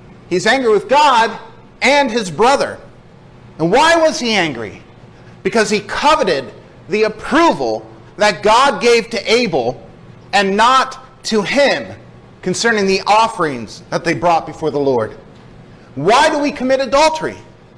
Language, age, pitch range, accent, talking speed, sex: English, 40-59, 180-245 Hz, American, 135 wpm, male